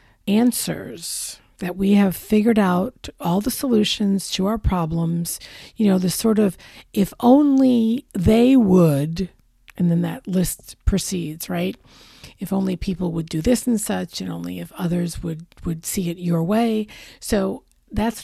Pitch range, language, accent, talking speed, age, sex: 175-230 Hz, English, American, 155 wpm, 50-69, female